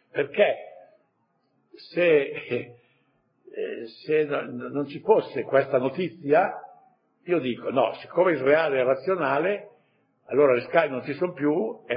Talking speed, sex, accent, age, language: 115 wpm, male, native, 60-79, Italian